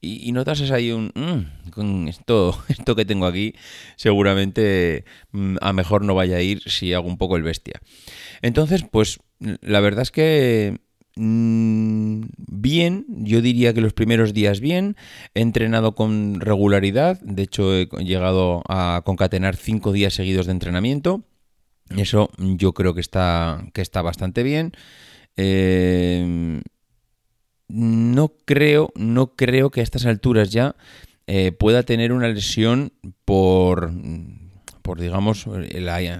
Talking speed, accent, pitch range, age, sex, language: 135 wpm, Spanish, 95-115 Hz, 30-49, male, Spanish